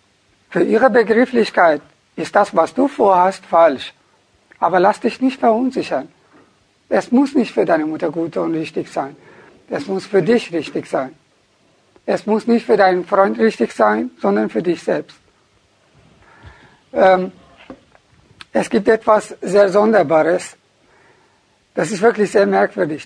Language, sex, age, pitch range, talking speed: German, male, 60-79, 165-215 Hz, 140 wpm